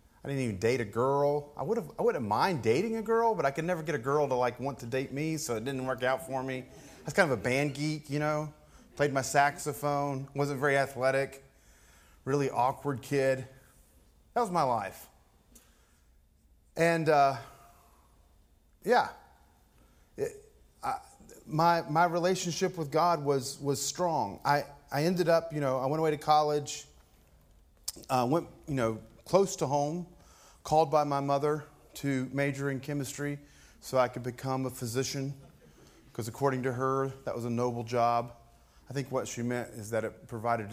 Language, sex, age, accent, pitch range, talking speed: English, male, 30-49, American, 115-150 Hz, 175 wpm